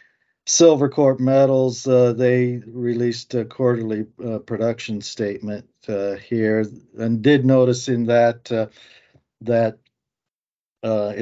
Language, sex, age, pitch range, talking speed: English, male, 50-69, 100-120 Hz, 110 wpm